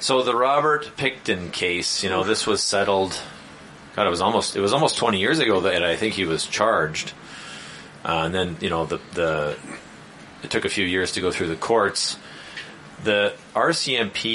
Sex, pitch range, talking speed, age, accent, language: male, 90-120 Hz, 190 wpm, 30-49, American, English